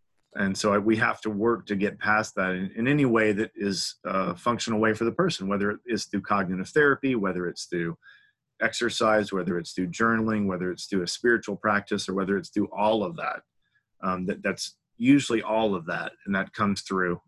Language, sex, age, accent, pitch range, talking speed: English, male, 30-49, American, 100-120 Hz, 210 wpm